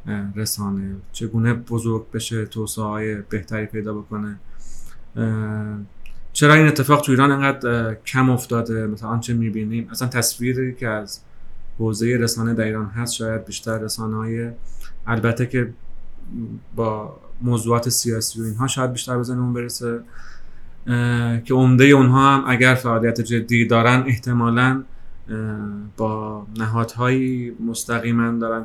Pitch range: 110-125 Hz